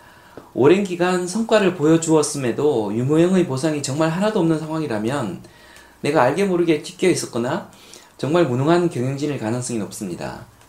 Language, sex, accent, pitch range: Korean, male, native, 125-175 Hz